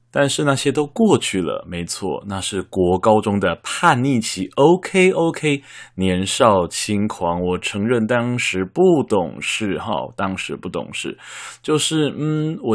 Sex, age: male, 20-39